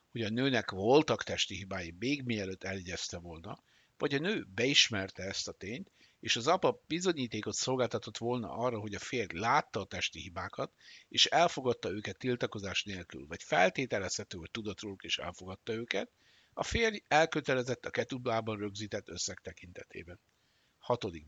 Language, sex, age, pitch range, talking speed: Hungarian, male, 60-79, 95-130 Hz, 150 wpm